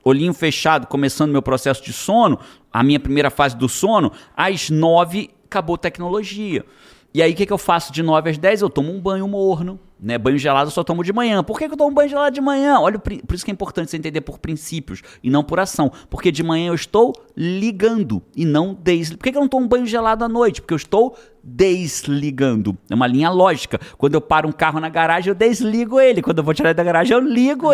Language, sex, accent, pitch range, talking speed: Portuguese, male, Brazilian, 150-200 Hz, 240 wpm